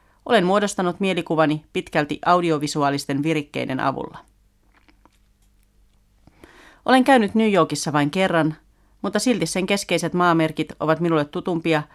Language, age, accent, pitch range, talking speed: Finnish, 40-59, native, 140-180 Hz, 105 wpm